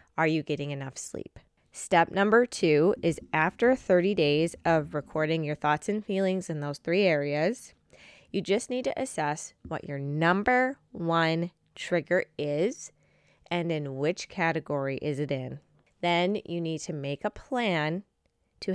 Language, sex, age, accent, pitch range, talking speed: English, female, 20-39, American, 150-180 Hz, 155 wpm